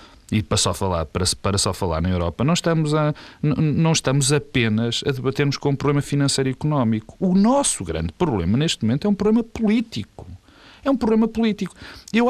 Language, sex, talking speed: Portuguese, male, 165 wpm